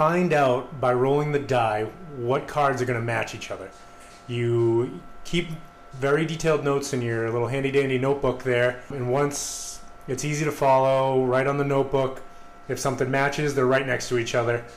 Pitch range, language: 125-150 Hz, English